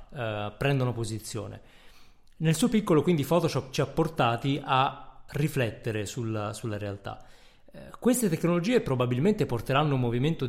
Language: Italian